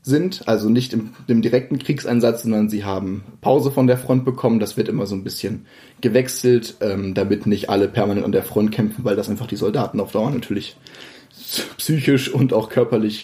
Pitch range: 110-130 Hz